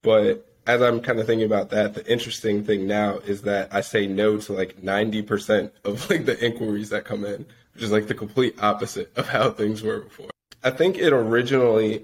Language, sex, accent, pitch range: English, male, American, 100-115 Hz